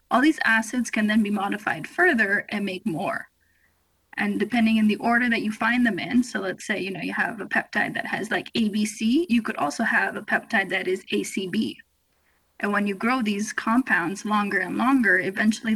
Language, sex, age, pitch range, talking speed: English, female, 20-39, 205-245 Hz, 200 wpm